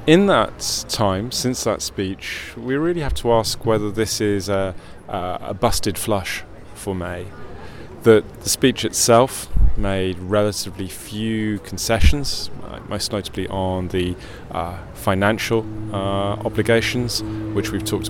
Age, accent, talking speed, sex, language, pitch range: 30-49, British, 135 wpm, male, English, 85-110 Hz